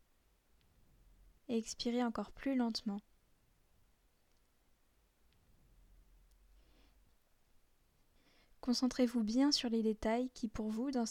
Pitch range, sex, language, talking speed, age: 215-245 Hz, female, French, 75 wpm, 10-29